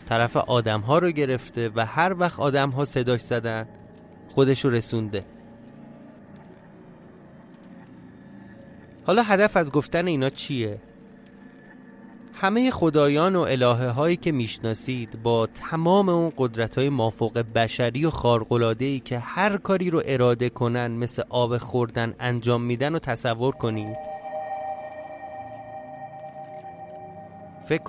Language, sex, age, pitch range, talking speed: Persian, male, 30-49, 115-155 Hz, 105 wpm